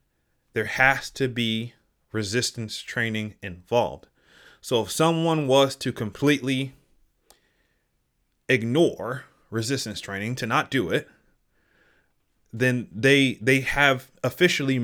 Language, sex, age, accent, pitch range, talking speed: English, male, 30-49, American, 105-130 Hz, 100 wpm